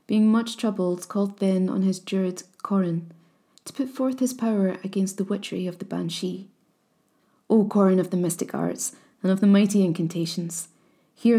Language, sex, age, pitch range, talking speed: English, female, 20-39, 180-205 Hz, 170 wpm